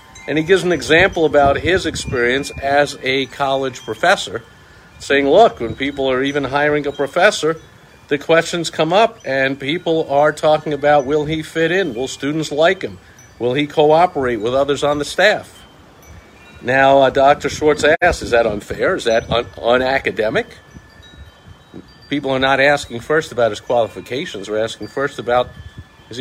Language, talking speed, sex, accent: English, 160 wpm, male, American